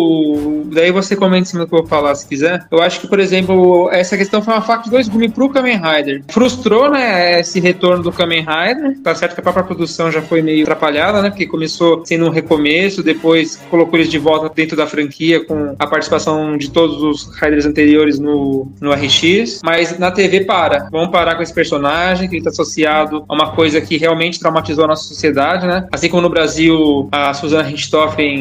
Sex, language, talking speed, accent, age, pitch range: male, Portuguese, 205 wpm, Brazilian, 20-39, 160-215 Hz